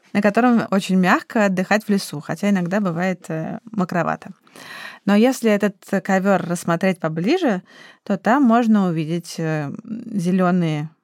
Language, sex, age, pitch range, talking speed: Russian, female, 20-39, 175-230 Hz, 120 wpm